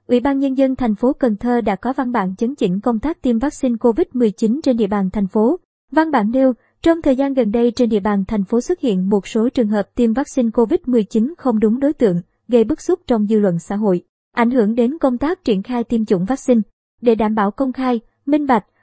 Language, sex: Vietnamese, male